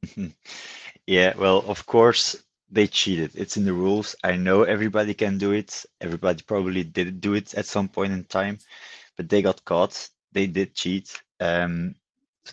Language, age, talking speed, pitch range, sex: Dutch, 20-39, 170 wpm, 95-110 Hz, male